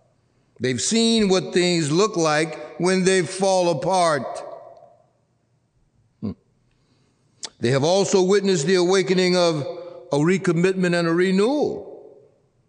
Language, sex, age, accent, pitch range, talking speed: English, male, 60-79, American, 130-210 Hz, 105 wpm